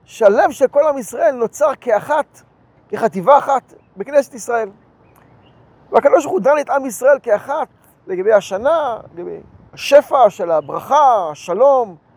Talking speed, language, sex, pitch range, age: 120 wpm, Hebrew, male, 205-270 Hz, 40-59